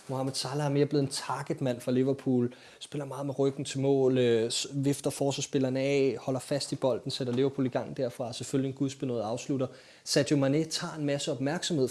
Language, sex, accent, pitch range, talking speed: Danish, male, native, 125-145 Hz, 190 wpm